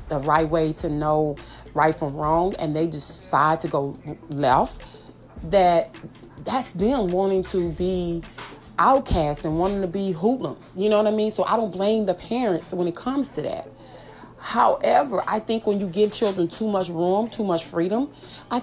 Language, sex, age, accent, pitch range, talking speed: English, female, 30-49, American, 180-230 Hz, 180 wpm